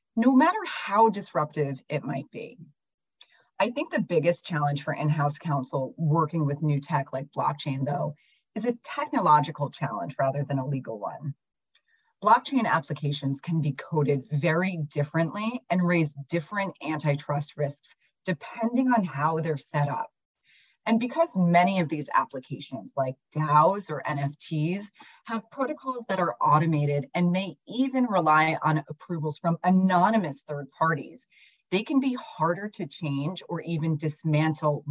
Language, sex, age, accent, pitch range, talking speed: English, female, 30-49, American, 145-200 Hz, 145 wpm